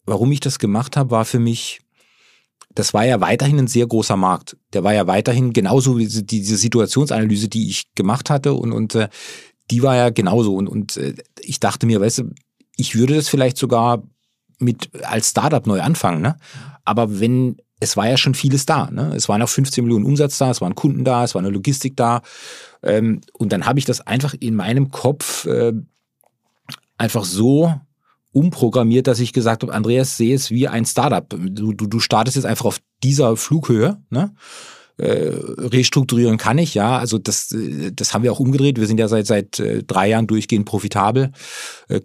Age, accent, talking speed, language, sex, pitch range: 40-59, German, 190 wpm, German, male, 105-130 Hz